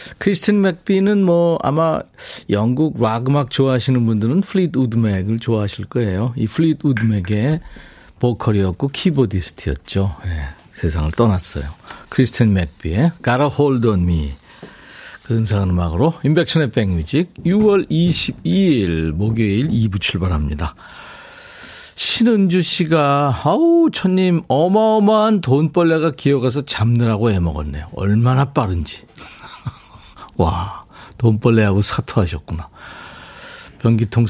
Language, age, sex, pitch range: Korean, 50-69, male, 100-160 Hz